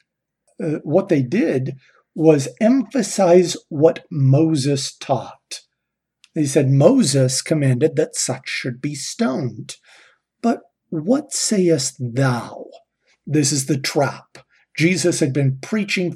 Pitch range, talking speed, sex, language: 135-170 Hz, 110 wpm, male, English